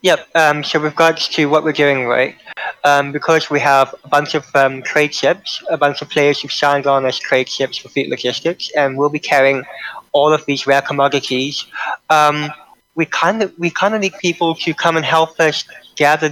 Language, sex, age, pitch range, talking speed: English, male, 20-39, 135-150 Hz, 210 wpm